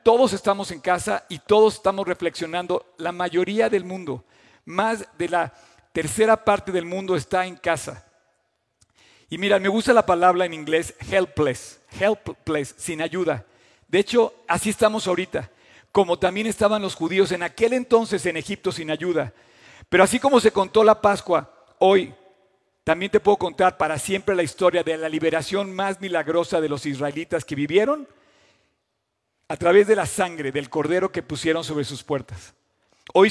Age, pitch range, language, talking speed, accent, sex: 50-69, 165-205 Hz, Spanish, 160 wpm, Mexican, male